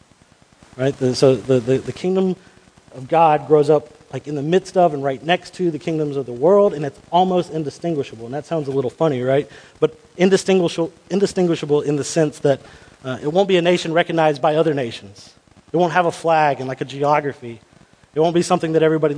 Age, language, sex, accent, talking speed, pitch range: 30-49, English, male, American, 210 wpm, 130-170 Hz